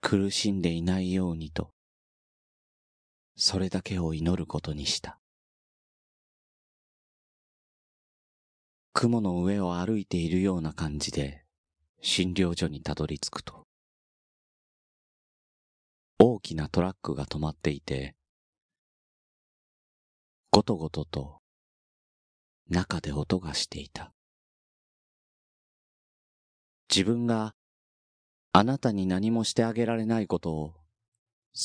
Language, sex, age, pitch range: Japanese, male, 40-59, 75-100 Hz